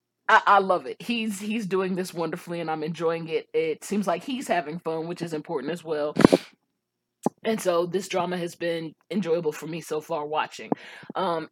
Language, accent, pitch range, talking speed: English, American, 165-215 Hz, 195 wpm